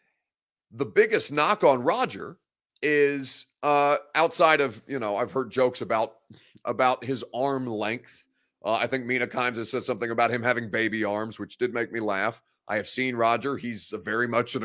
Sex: male